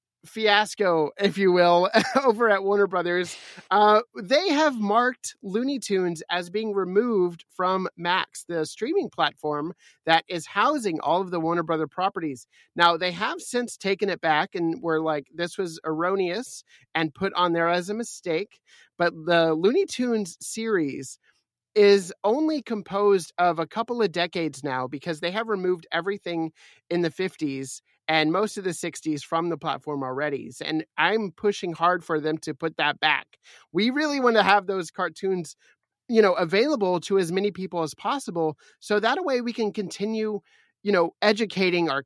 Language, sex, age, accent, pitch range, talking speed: English, male, 30-49, American, 165-210 Hz, 170 wpm